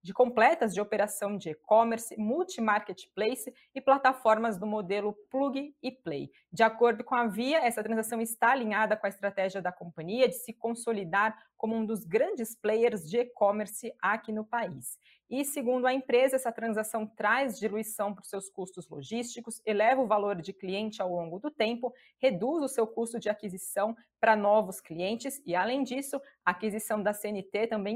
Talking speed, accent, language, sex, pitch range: 170 wpm, Brazilian, Portuguese, female, 200-245 Hz